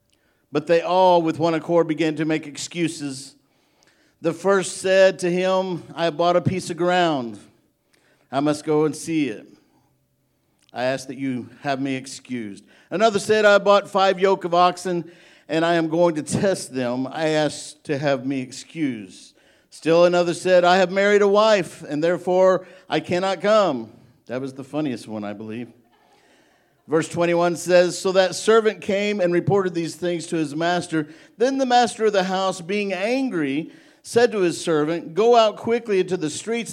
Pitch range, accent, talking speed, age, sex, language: 150-195 Hz, American, 180 wpm, 50-69, male, English